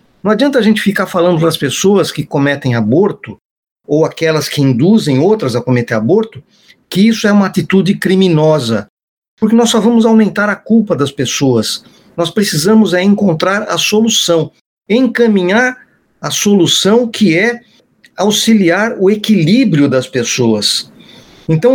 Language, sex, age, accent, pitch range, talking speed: Portuguese, male, 50-69, Brazilian, 155-220 Hz, 140 wpm